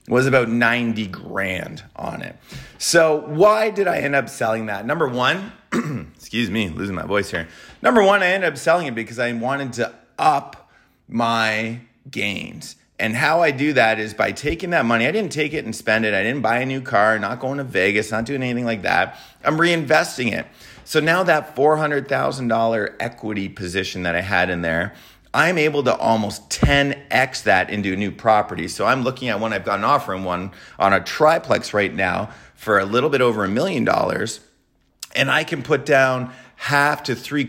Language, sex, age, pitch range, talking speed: English, male, 30-49, 105-145 Hz, 200 wpm